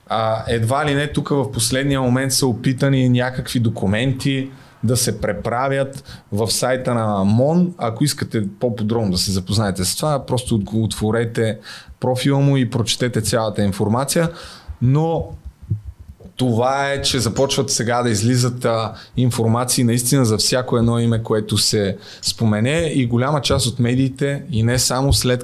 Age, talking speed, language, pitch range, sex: 30-49, 145 wpm, Bulgarian, 110-130 Hz, male